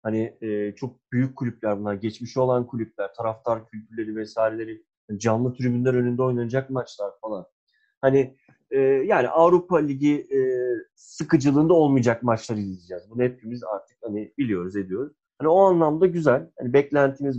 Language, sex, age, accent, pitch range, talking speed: Turkish, male, 30-49, native, 115-140 Hz, 140 wpm